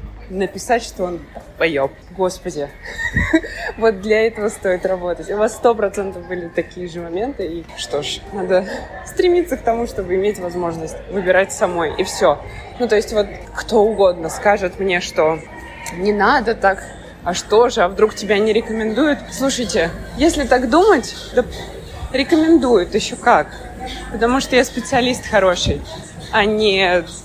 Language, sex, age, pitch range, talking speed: Russian, female, 20-39, 175-235 Hz, 150 wpm